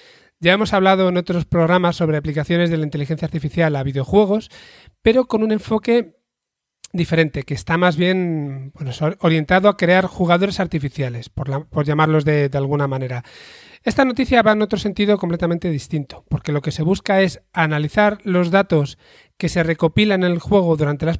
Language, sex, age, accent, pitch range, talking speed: Spanish, male, 40-59, Spanish, 155-205 Hz, 175 wpm